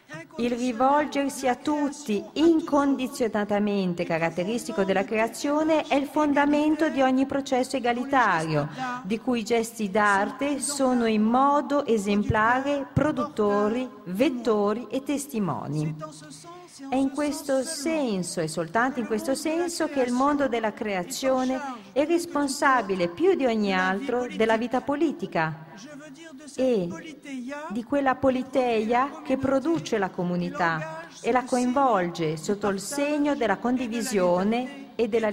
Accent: native